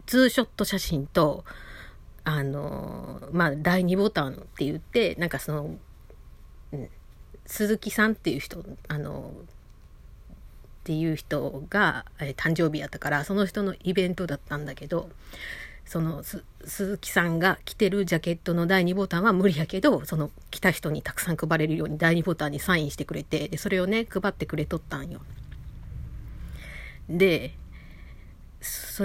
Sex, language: female, Japanese